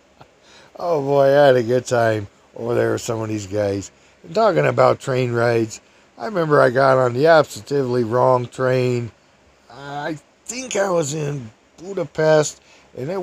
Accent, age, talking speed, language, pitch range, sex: American, 50-69, 165 wpm, English, 110-150 Hz, male